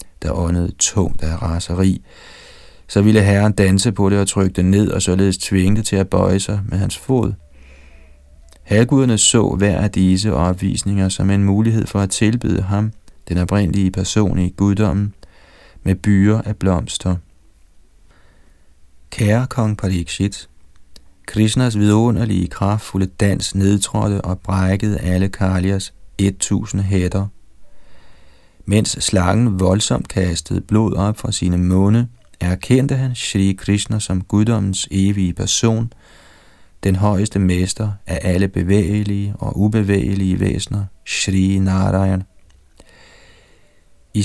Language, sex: Danish, male